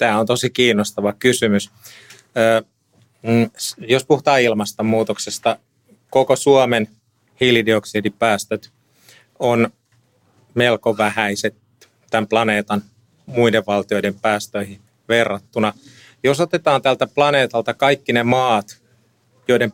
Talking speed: 85 wpm